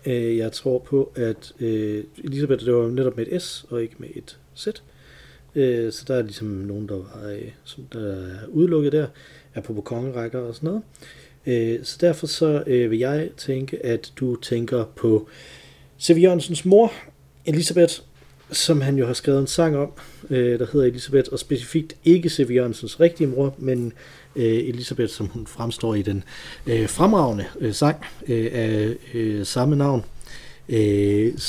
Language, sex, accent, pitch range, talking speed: Danish, male, native, 110-140 Hz, 155 wpm